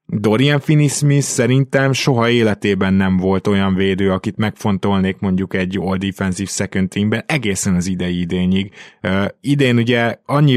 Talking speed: 140 wpm